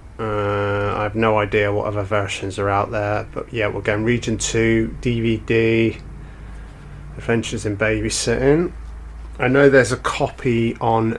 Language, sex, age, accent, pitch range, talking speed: English, male, 30-49, British, 100-115 Hz, 145 wpm